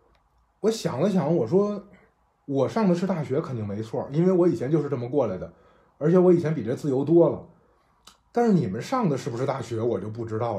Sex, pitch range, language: male, 115-165 Hz, Chinese